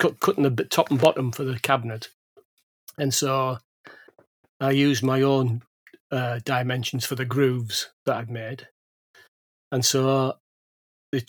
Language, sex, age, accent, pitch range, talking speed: English, male, 40-59, British, 120-135 Hz, 135 wpm